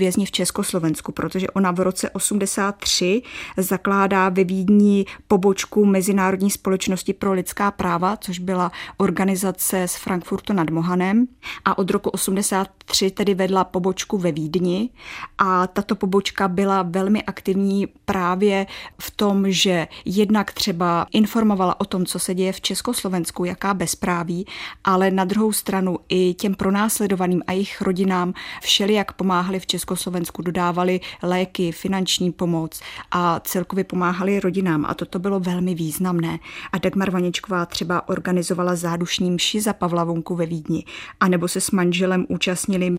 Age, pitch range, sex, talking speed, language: 20-39, 180-195 Hz, female, 145 wpm, Czech